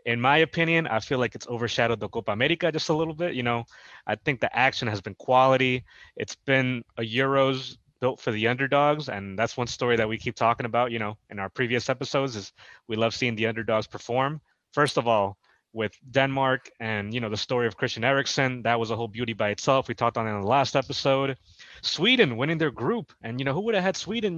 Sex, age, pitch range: male, 20-39, 115-140 Hz